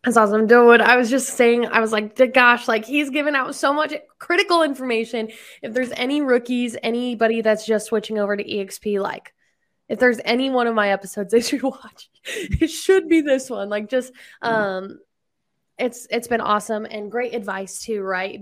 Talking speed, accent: 190 wpm, American